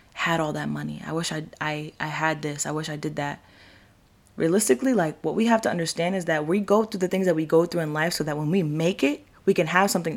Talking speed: 270 wpm